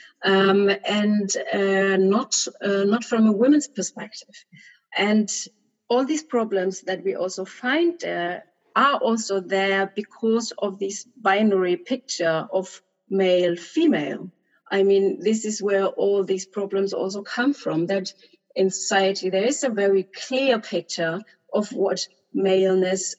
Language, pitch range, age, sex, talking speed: English, 190-235 Hz, 30-49, female, 135 wpm